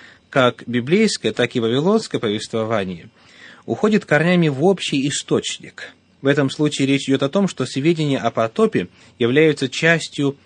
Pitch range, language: 115-160 Hz, Russian